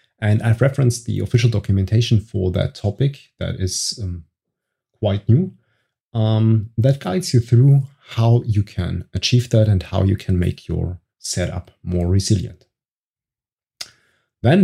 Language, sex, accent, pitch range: English, male, German, 100-125 Hz